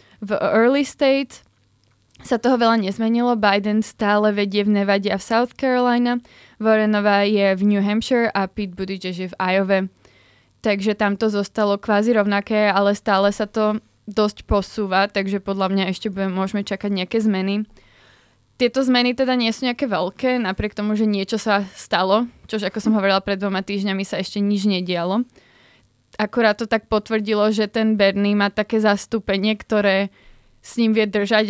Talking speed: 165 wpm